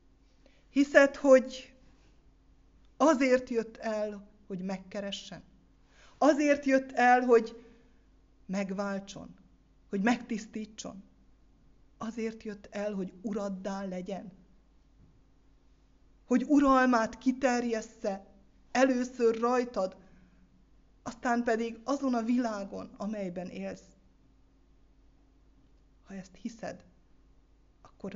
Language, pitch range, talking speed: Hungarian, 195-250 Hz, 75 wpm